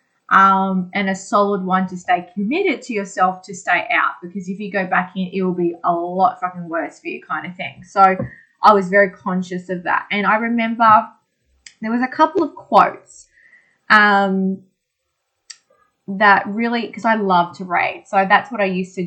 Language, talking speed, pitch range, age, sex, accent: English, 190 wpm, 185-225 Hz, 20-39, female, Australian